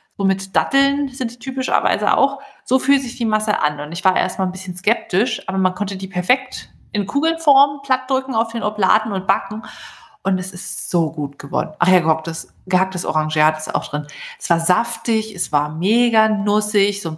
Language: German